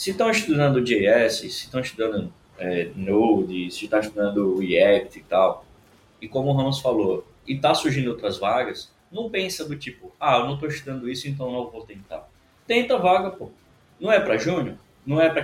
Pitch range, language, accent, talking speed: 120-185 Hz, Portuguese, Brazilian, 195 wpm